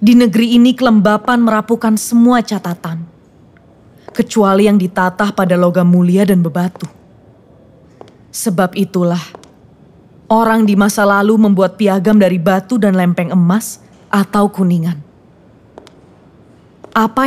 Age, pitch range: 20-39, 185-220 Hz